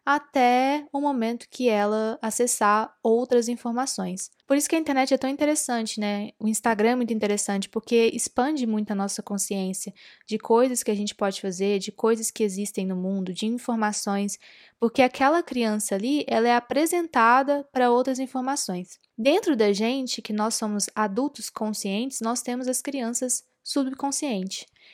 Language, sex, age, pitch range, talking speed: Portuguese, female, 10-29, 210-260 Hz, 160 wpm